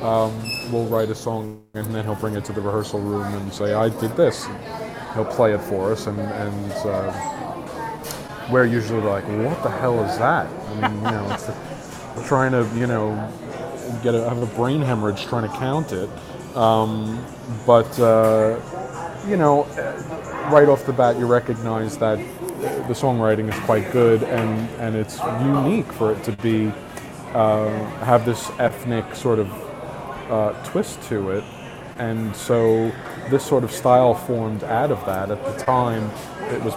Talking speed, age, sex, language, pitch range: 170 wpm, 30-49, male, English, 105-125 Hz